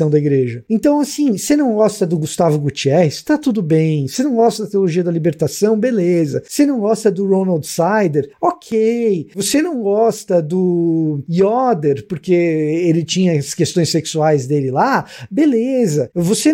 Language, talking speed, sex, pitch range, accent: Portuguese, 155 wpm, male, 165-230 Hz, Brazilian